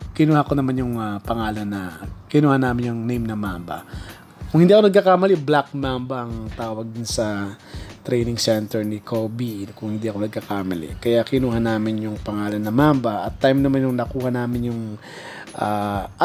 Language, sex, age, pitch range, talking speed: Filipino, male, 20-39, 115-170 Hz, 170 wpm